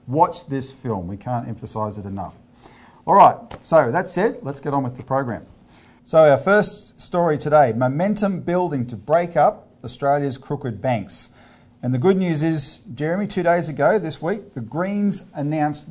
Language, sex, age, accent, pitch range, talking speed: English, male, 40-59, Australian, 120-160 Hz, 170 wpm